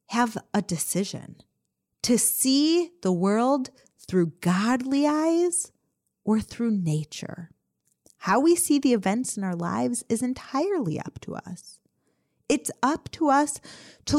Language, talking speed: English, 130 wpm